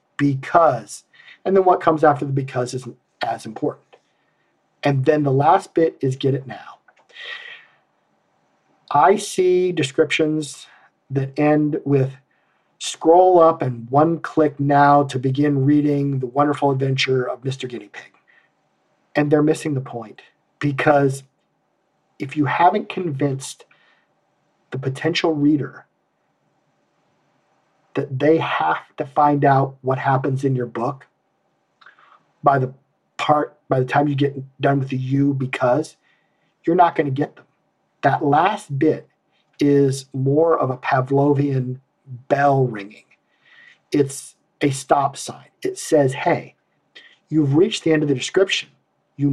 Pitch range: 135-160 Hz